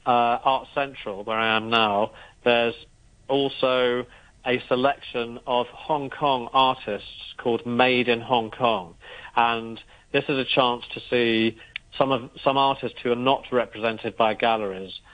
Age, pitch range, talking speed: 40-59, 110-130 Hz, 145 wpm